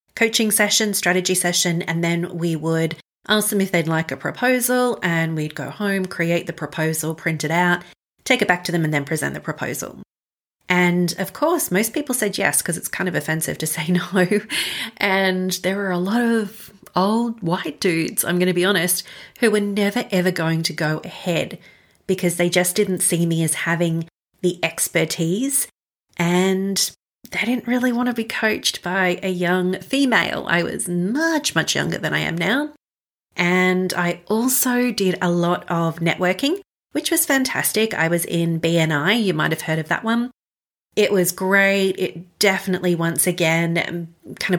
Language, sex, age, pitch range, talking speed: English, female, 30-49, 170-205 Hz, 180 wpm